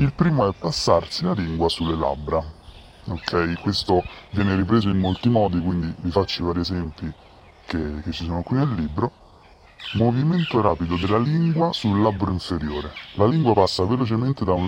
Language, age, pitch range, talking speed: Italian, 30-49, 85-110 Hz, 165 wpm